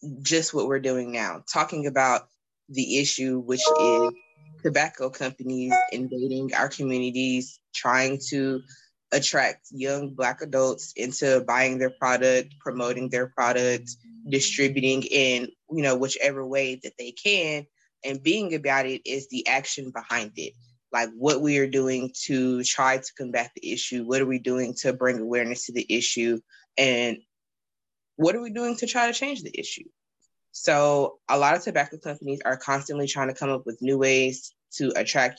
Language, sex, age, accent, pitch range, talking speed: English, female, 20-39, American, 130-145 Hz, 165 wpm